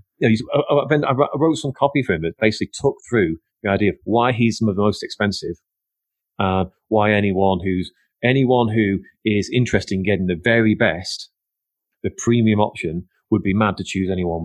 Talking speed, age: 165 wpm, 30-49